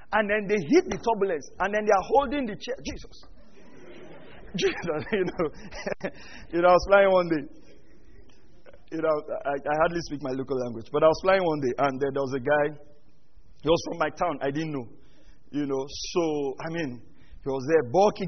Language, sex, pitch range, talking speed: English, male, 150-230 Hz, 195 wpm